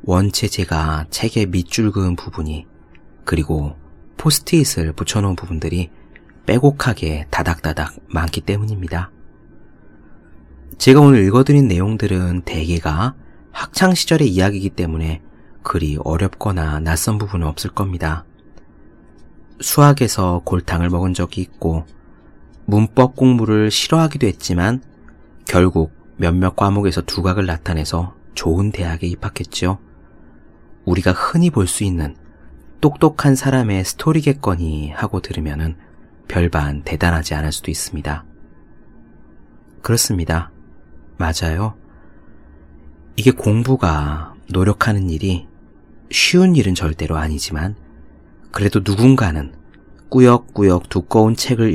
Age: 30-49